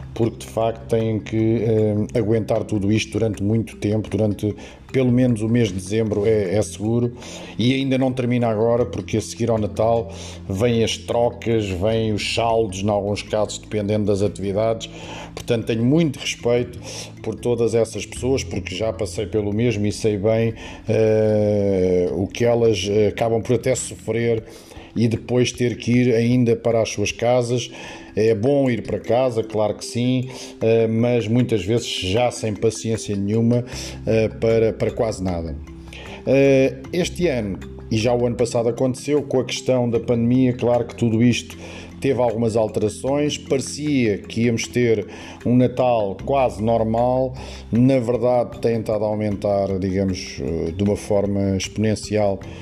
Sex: male